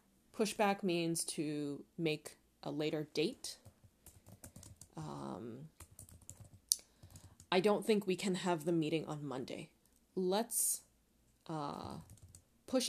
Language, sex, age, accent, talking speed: English, female, 30-49, American, 100 wpm